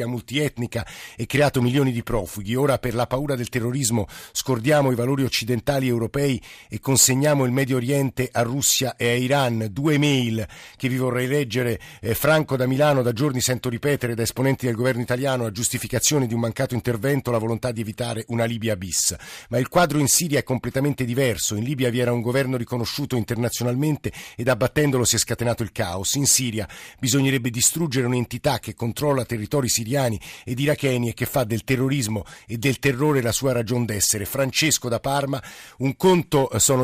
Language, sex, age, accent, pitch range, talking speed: Italian, male, 50-69, native, 115-135 Hz, 180 wpm